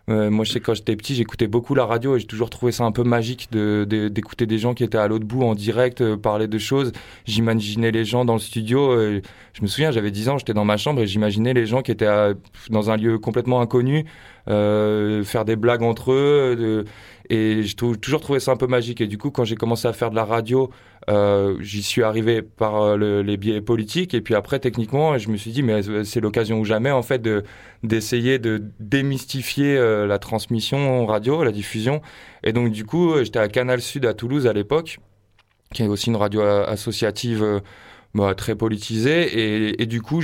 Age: 20-39